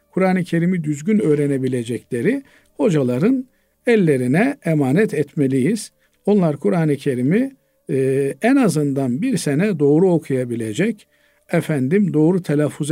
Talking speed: 100 wpm